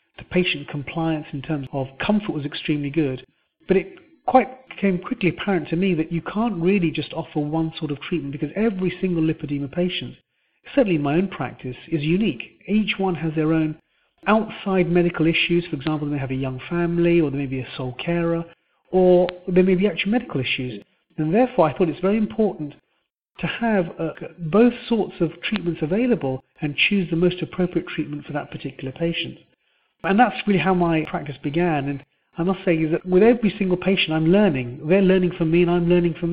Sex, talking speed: male, 200 wpm